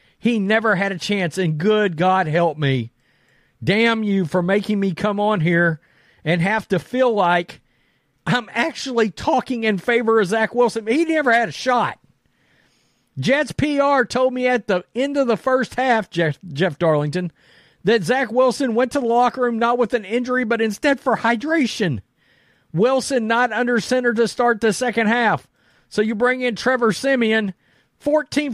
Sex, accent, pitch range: male, American, 180-245 Hz